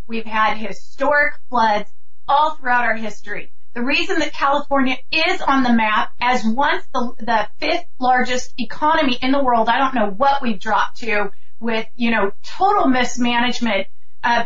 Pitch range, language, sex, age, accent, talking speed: 235-285 Hz, English, female, 30-49, American, 160 wpm